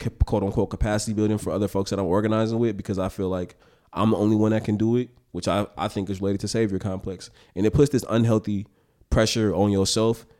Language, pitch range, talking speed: English, 95-110 Hz, 230 wpm